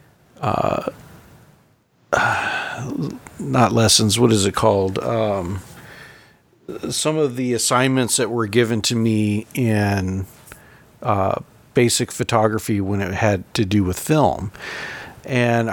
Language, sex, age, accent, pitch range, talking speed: English, male, 50-69, American, 105-135 Hz, 110 wpm